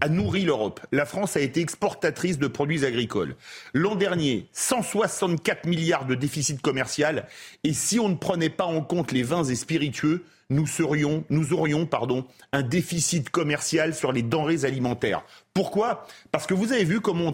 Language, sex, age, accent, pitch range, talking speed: French, male, 40-59, French, 145-190 Hz, 165 wpm